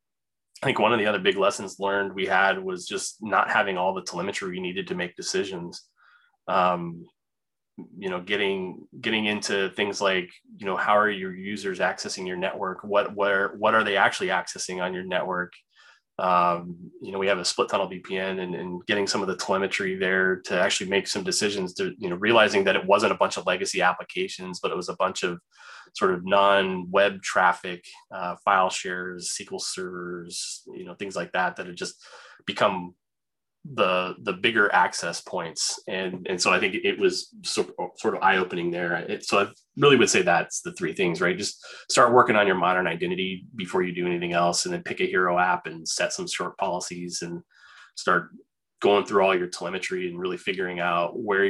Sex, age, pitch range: male, 20-39, 90-110 Hz